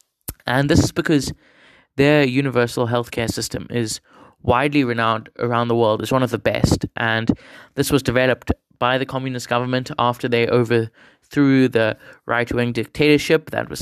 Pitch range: 115-135 Hz